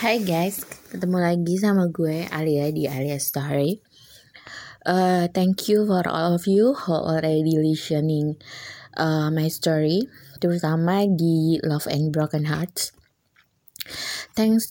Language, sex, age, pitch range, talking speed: Indonesian, female, 20-39, 155-190 Hz, 120 wpm